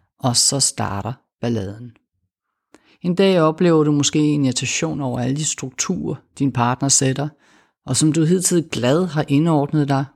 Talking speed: 155 wpm